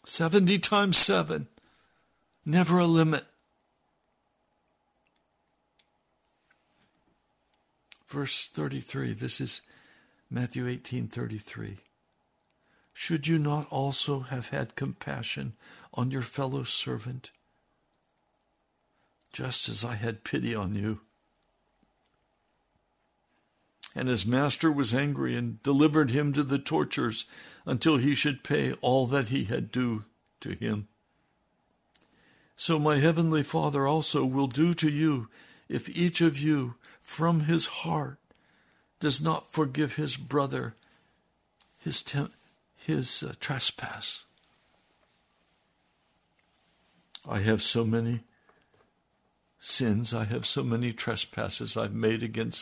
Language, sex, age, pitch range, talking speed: English, male, 60-79, 115-155 Hz, 105 wpm